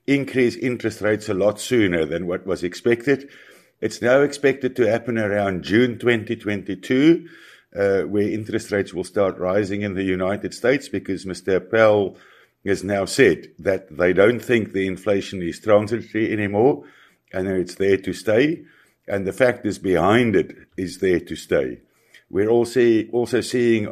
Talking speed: 155 wpm